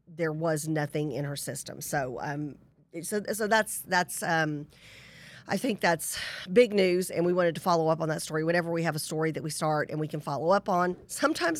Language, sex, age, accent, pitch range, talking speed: English, female, 40-59, American, 155-190 Hz, 215 wpm